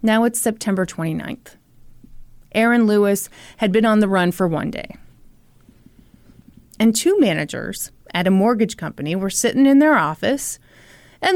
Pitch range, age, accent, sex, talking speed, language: 180-270 Hz, 30-49, American, female, 145 wpm, English